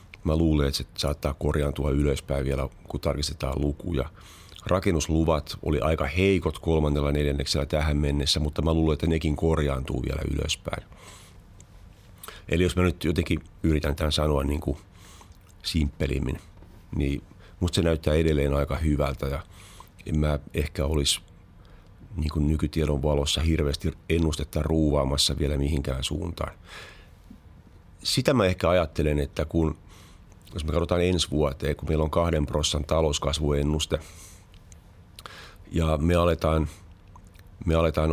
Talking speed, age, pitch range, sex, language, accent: 120 wpm, 40-59, 75-90 Hz, male, Finnish, native